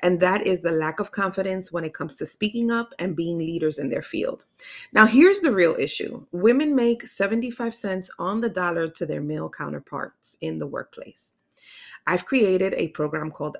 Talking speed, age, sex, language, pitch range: 190 wpm, 30-49, female, English, 165-205 Hz